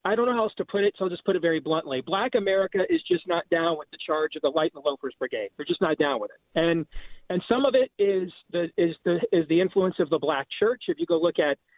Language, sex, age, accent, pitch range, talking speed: English, male, 40-59, American, 170-215 Hz, 290 wpm